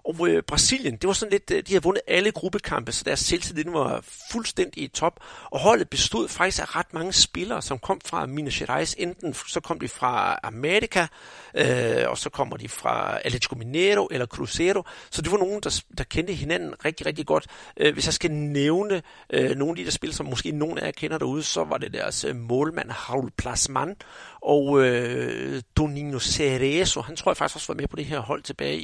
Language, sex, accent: Danish, male, native